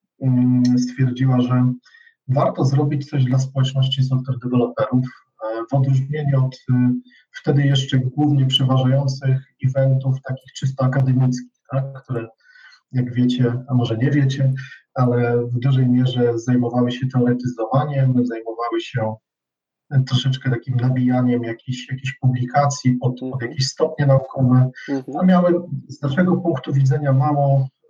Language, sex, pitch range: Polish, male, 125-140 Hz